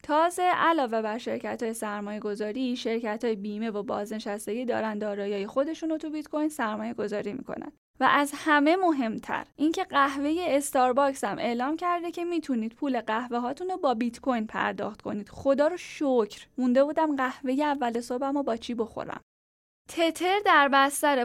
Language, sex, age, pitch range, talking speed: Persian, female, 10-29, 220-295 Hz, 150 wpm